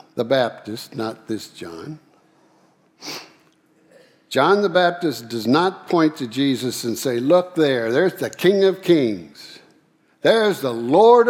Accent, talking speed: American, 135 wpm